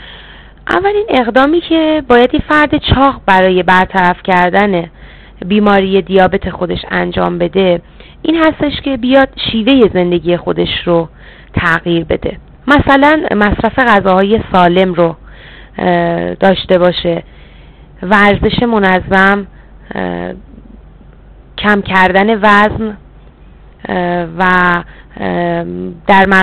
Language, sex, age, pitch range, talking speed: Persian, female, 30-49, 180-215 Hz, 85 wpm